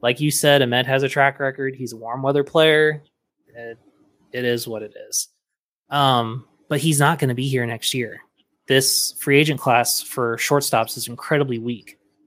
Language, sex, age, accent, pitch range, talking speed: English, male, 20-39, American, 120-155 Hz, 185 wpm